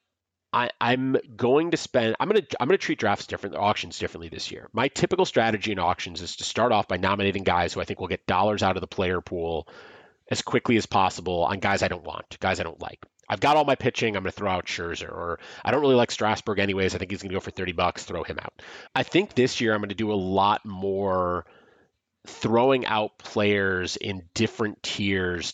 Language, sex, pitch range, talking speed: English, male, 95-130 Hz, 225 wpm